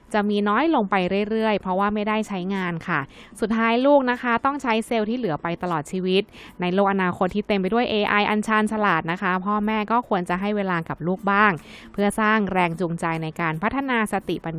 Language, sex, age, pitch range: Thai, female, 20-39, 180-230 Hz